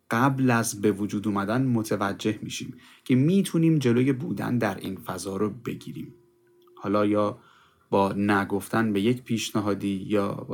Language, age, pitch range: Persian, 30-49, 105-140 Hz